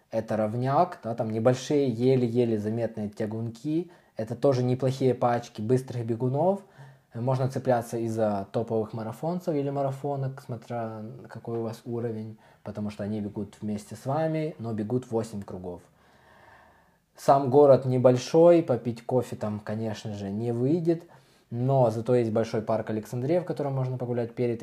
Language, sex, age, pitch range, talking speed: Russian, male, 20-39, 110-130 Hz, 140 wpm